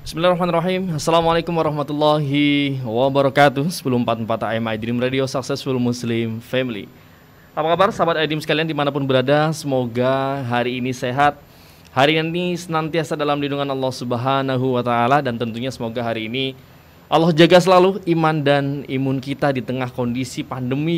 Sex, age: male, 20-39